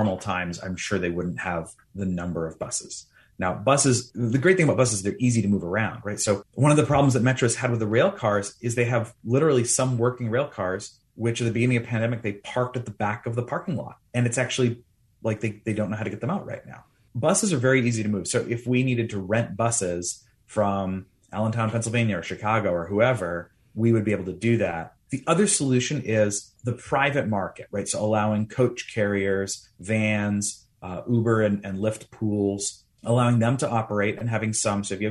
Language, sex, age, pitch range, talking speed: English, male, 30-49, 100-120 Hz, 225 wpm